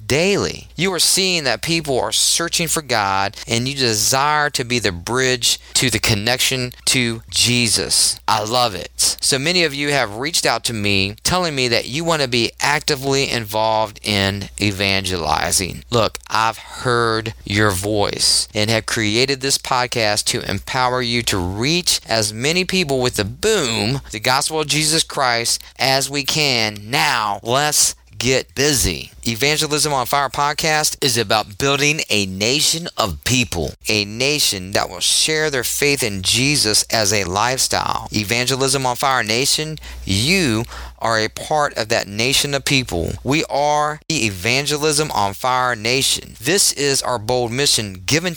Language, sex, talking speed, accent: English, male, 160 wpm, American